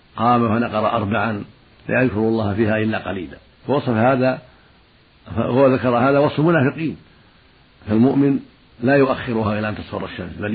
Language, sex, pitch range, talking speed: Arabic, male, 105-130 Hz, 130 wpm